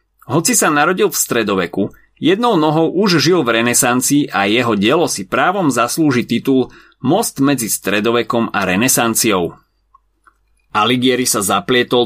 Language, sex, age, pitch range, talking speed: Slovak, male, 30-49, 110-155 Hz, 130 wpm